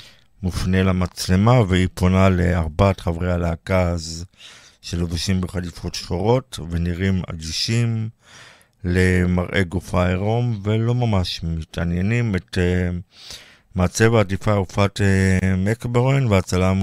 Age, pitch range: 50-69, 90-105 Hz